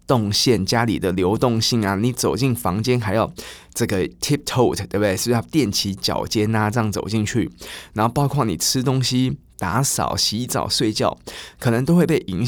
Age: 20-39